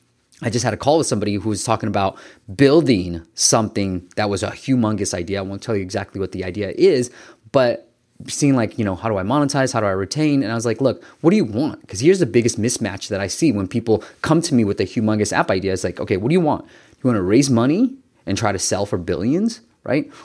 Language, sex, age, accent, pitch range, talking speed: English, male, 20-39, American, 100-140 Hz, 255 wpm